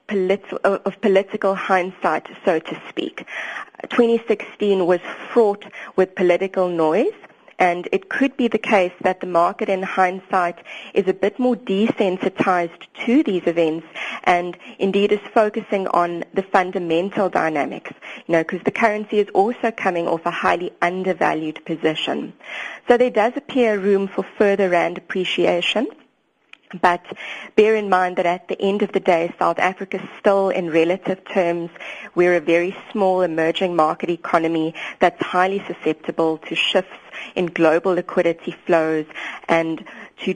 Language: English